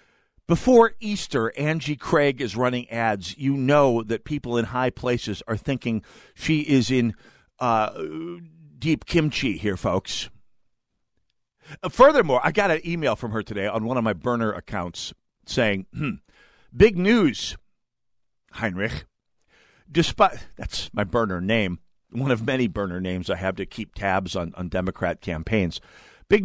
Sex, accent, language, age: male, American, English, 50-69